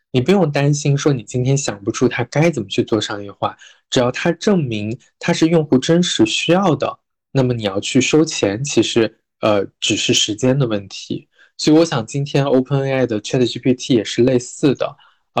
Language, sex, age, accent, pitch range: Chinese, male, 20-39, native, 120-155 Hz